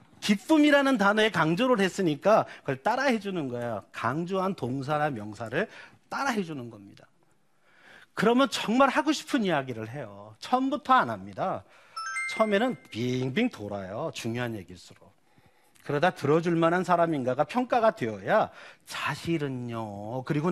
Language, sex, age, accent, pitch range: Korean, male, 40-59, native, 125-205 Hz